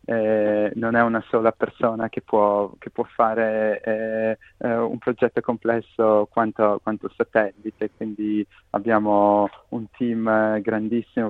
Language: Italian